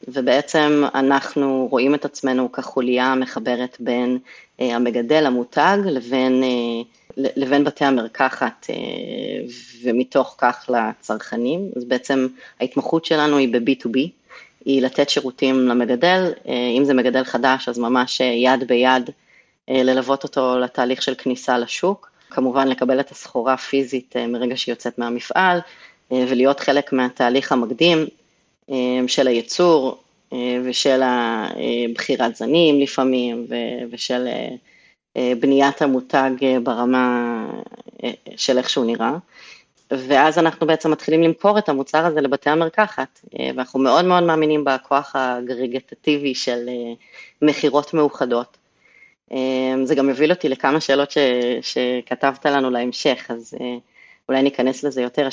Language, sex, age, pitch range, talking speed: Hebrew, female, 30-49, 125-140 Hz, 120 wpm